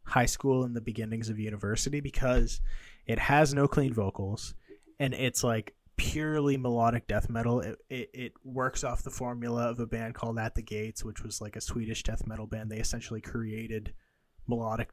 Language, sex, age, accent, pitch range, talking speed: English, male, 20-39, American, 110-125 Hz, 185 wpm